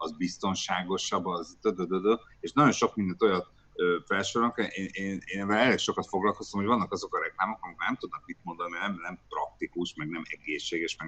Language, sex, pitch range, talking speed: Hungarian, male, 85-115 Hz, 175 wpm